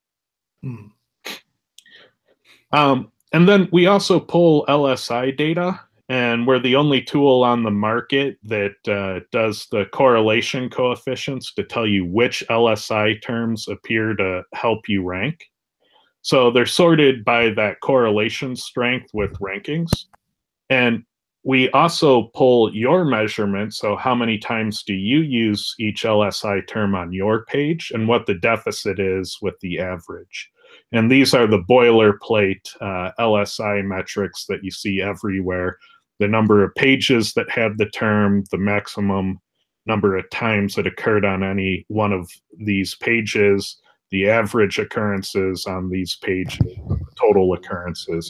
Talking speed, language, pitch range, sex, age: 135 wpm, English, 100-130 Hz, male, 30-49